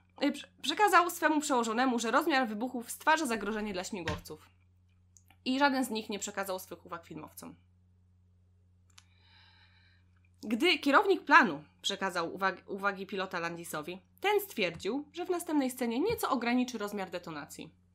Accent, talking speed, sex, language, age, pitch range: native, 125 wpm, female, Polish, 20-39, 160-260 Hz